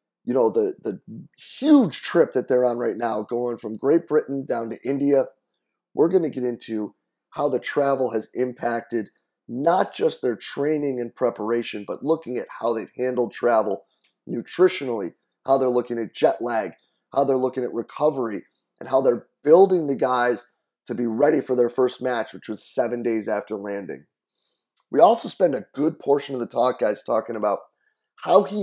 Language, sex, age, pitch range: English, male, 30-49, 125-155 Hz